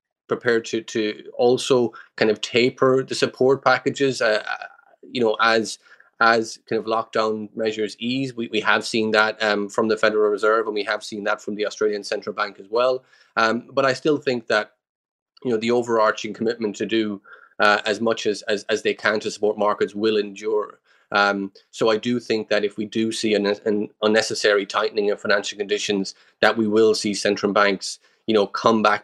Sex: male